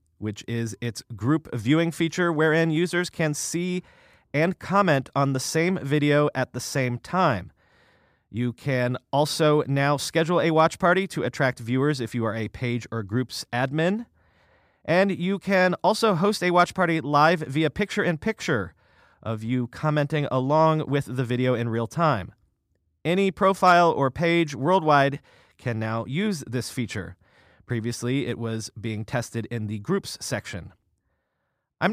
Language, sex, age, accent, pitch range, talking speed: English, male, 30-49, American, 120-170 Hz, 150 wpm